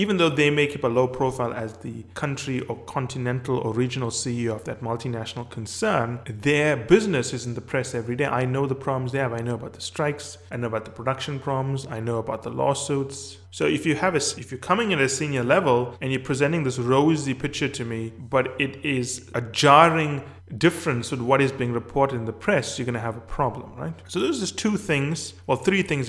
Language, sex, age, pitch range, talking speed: English, male, 20-39, 120-140 Hz, 230 wpm